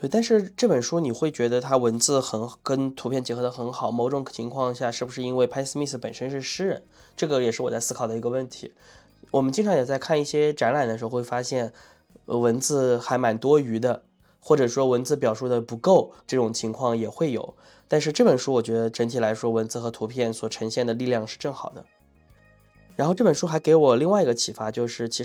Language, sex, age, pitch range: Chinese, male, 20-39, 115-140 Hz